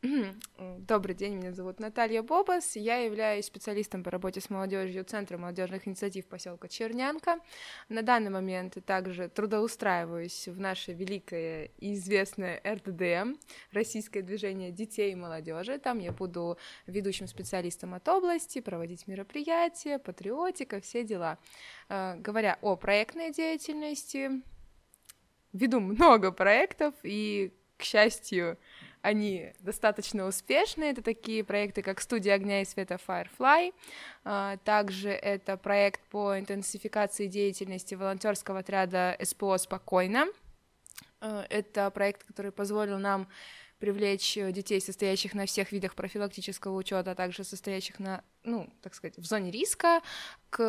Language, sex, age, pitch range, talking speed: Russian, female, 20-39, 190-225 Hz, 120 wpm